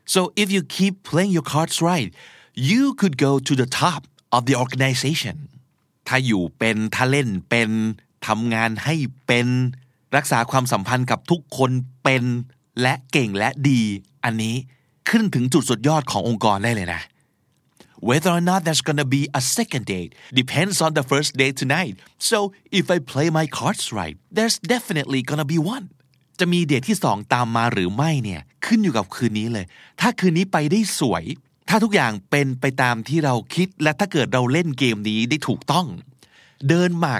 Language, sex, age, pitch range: Thai, male, 30-49, 115-160 Hz